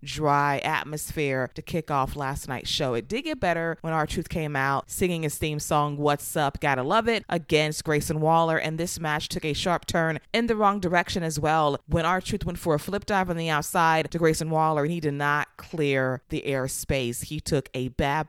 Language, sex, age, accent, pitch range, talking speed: English, female, 20-39, American, 145-175 Hz, 215 wpm